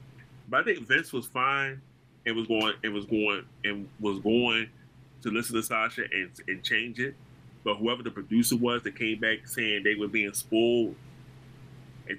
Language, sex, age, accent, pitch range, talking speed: English, male, 30-49, American, 105-130 Hz, 180 wpm